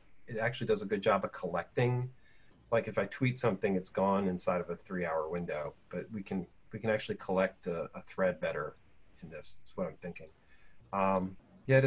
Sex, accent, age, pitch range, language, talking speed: male, American, 40-59, 110-140 Hz, English, 195 wpm